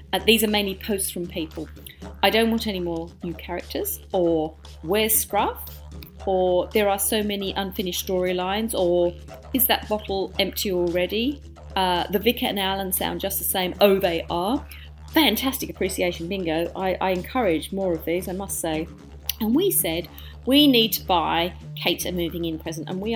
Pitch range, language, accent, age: 160-200 Hz, English, British, 40-59